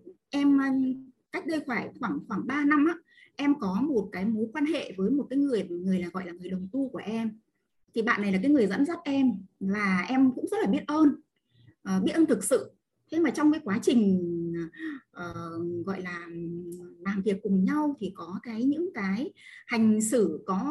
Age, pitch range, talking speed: 20-39, 200-290 Hz, 200 wpm